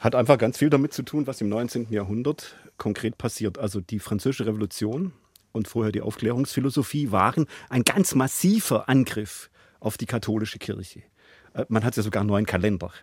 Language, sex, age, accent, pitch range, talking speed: German, male, 40-59, German, 105-150 Hz, 170 wpm